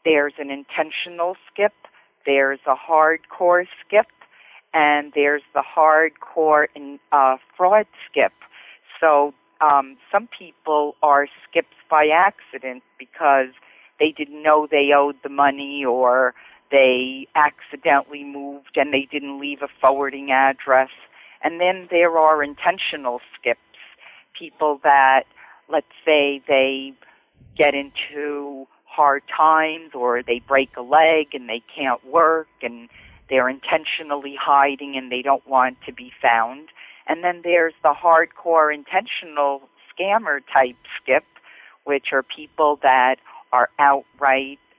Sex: female